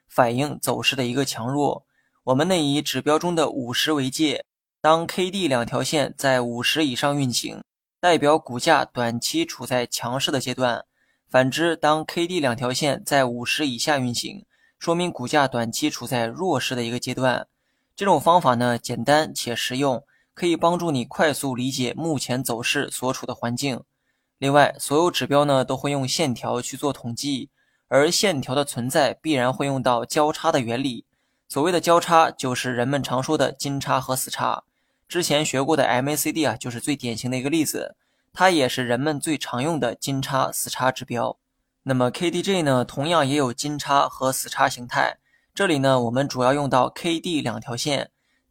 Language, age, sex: Chinese, 20-39, male